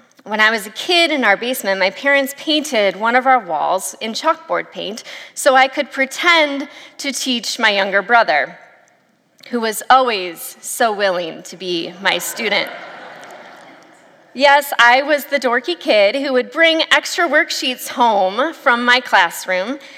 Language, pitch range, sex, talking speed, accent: English, 210-280 Hz, female, 155 wpm, American